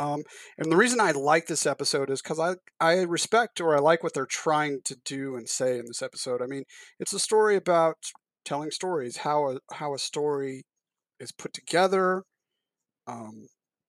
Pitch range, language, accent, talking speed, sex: 135-165 Hz, English, American, 180 wpm, male